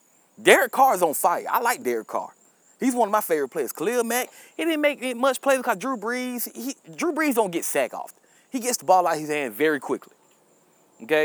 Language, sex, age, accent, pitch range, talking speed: English, male, 20-39, American, 175-255 Hz, 235 wpm